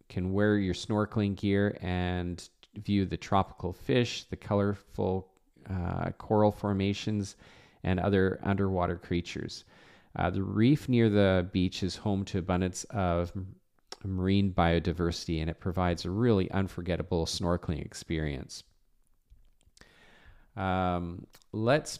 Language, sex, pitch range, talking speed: English, male, 90-110 Hz, 115 wpm